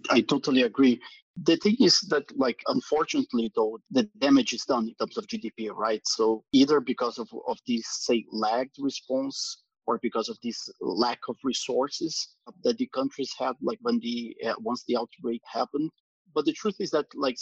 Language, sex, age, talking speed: Portuguese, male, 30-49, 185 wpm